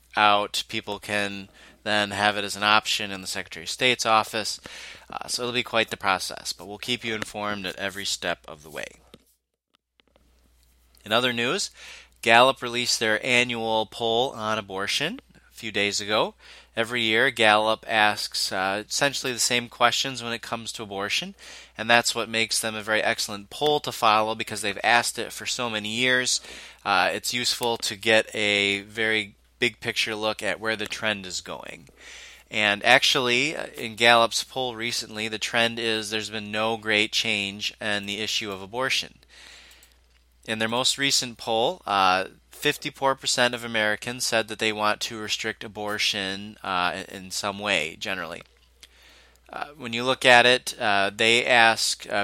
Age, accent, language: 20-39, American, English